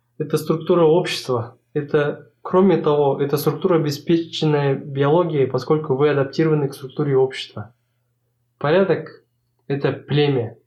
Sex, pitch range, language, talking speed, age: male, 125-150 Hz, Russian, 105 wpm, 20-39